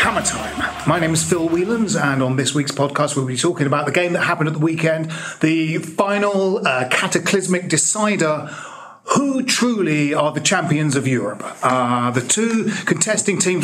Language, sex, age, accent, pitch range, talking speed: English, male, 40-59, British, 145-190 Hz, 175 wpm